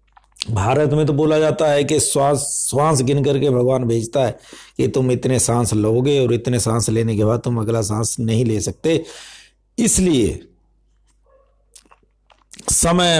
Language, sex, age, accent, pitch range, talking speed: Hindi, male, 60-79, native, 115-155 Hz, 150 wpm